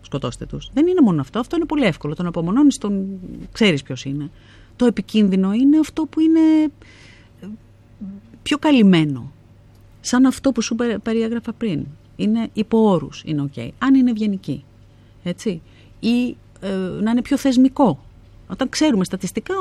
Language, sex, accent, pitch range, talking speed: Greek, female, native, 145-225 Hz, 150 wpm